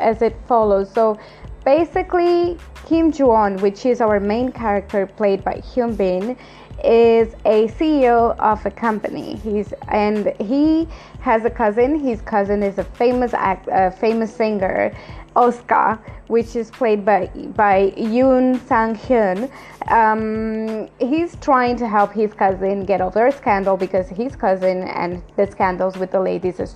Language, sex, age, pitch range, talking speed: English, female, 20-39, 205-245 Hz, 150 wpm